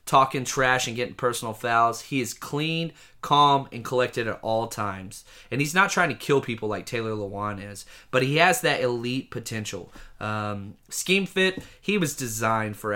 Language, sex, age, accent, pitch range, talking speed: English, male, 30-49, American, 115-150 Hz, 180 wpm